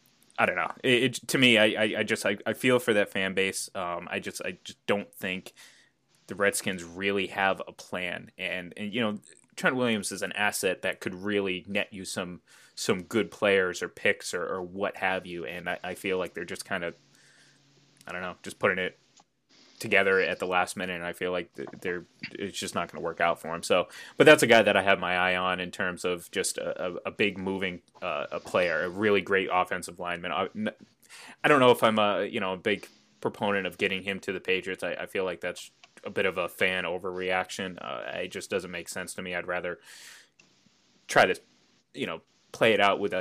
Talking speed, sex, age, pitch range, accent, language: 230 wpm, male, 20-39, 90-105 Hz, American, English